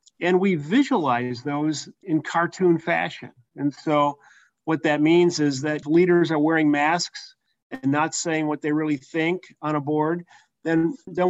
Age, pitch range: 40-59, 150-175 Hz